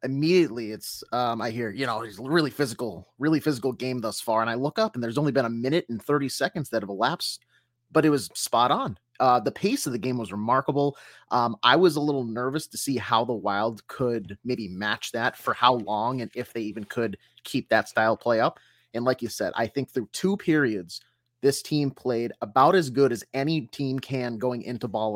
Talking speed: 225 wpm